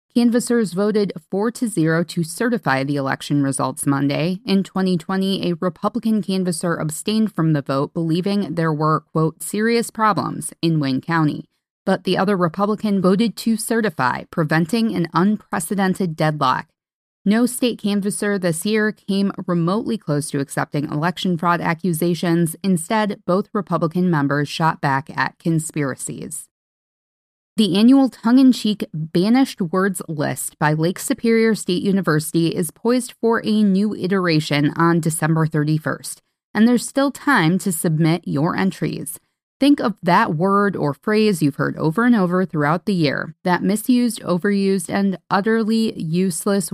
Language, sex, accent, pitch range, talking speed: English, female, American, 160-215 Hz, 140 wpm